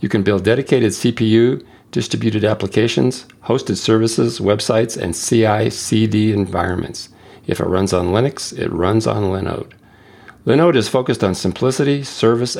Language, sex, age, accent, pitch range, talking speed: English, male, 50-69, American, 100-115 Hz, 140 wpm